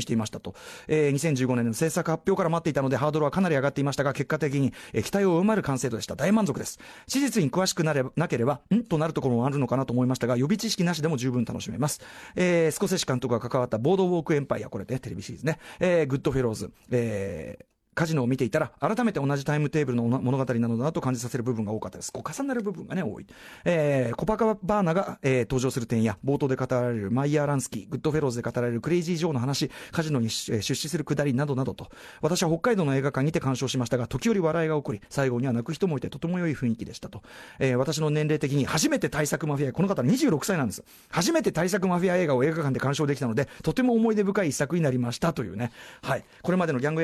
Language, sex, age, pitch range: Japanese, male, 30-49, 130-195 Hz